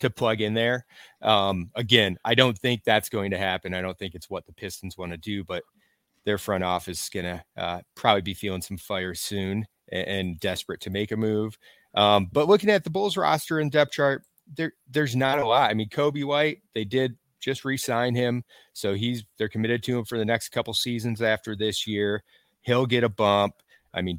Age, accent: 30-49, American